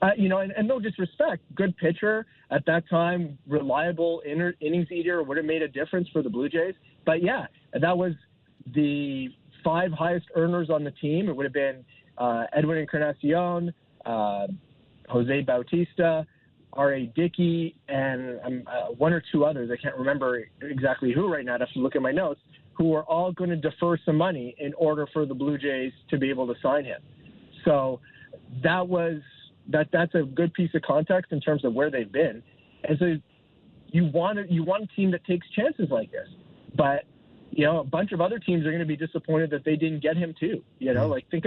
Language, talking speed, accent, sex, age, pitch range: English, 205 wpm, American, male, 30-49, 140-170 Hz